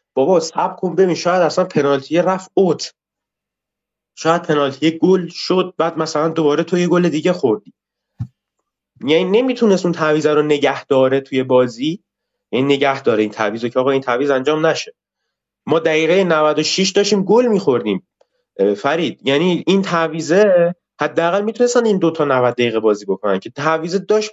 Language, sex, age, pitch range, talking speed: Persian, male, 30-49, 135-180 Hz, 155 wpm